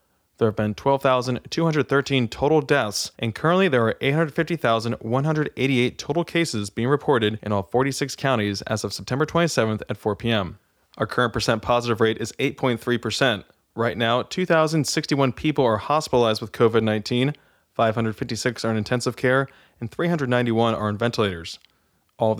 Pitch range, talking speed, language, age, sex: 110-135 Hz, 140 wpm, English, 20-39, male